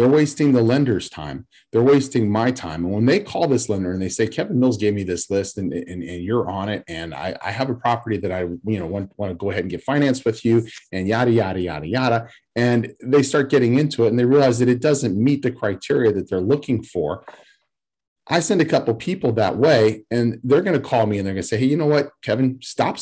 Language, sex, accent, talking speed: English, male, American, 255 wpm